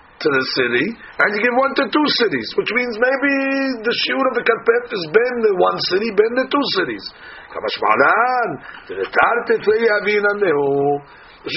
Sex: male